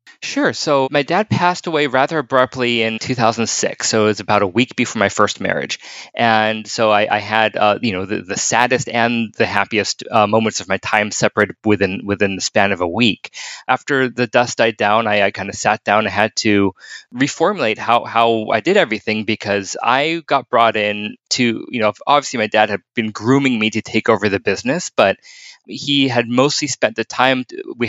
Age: 20-39